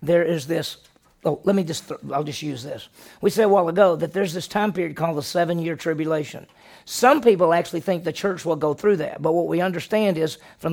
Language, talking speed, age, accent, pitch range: English, 235 wpm, 40-59, American, 155-195 Hz